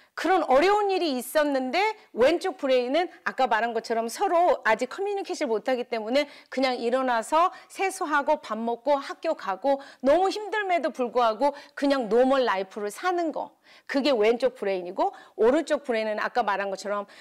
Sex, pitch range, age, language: female, 225-300 Hz, 40-59, Korean